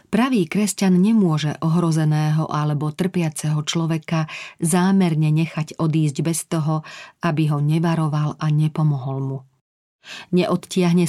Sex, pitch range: female, 150-180 Hz